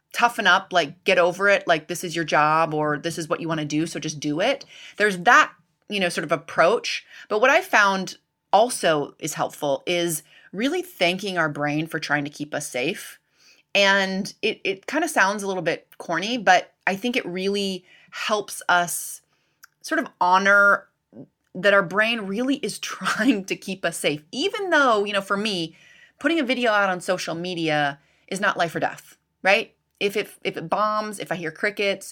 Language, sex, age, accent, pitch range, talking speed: English, female, 30-49, American, 170-230 Hz, 195 wpm